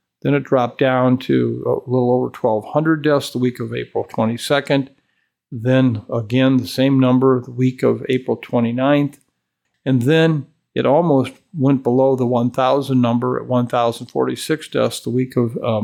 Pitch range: 125-140 Hz